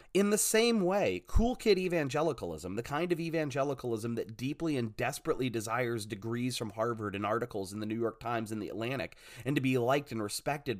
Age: 30-49